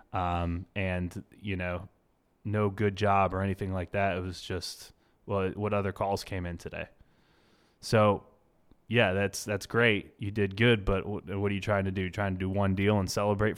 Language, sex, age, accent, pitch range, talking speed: English, male, 20-39, American, 95-115 Hz, 190 wpm